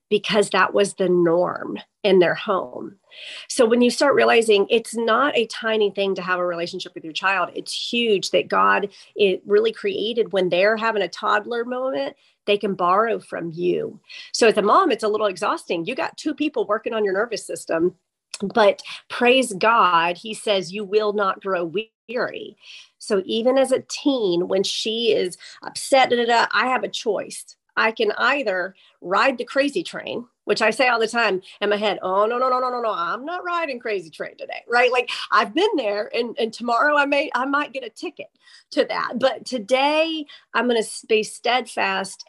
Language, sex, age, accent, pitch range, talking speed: English, female, 40-59, American, 195-250 Hz, 190 wpm